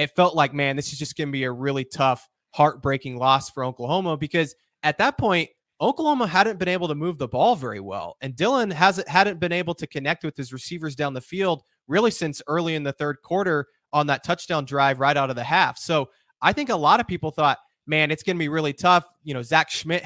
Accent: American